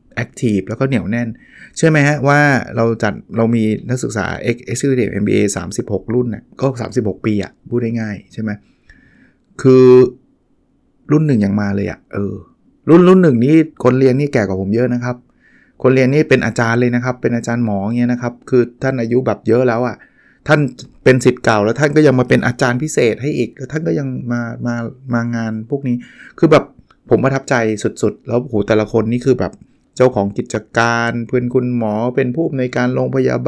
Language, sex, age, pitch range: Thai, male, 20-39, 110-130 Hz